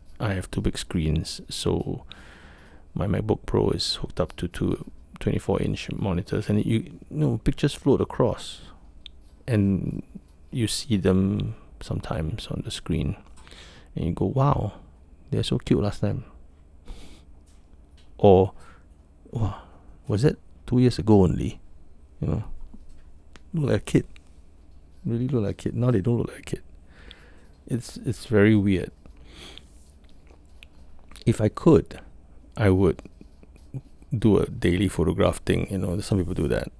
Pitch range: 70-100 Hz